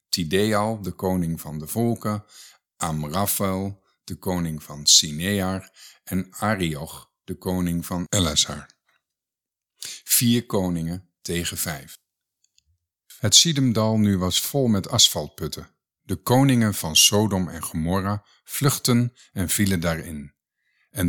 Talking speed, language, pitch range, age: 110 wpm, Dutch, 85-110 Hz, 50-69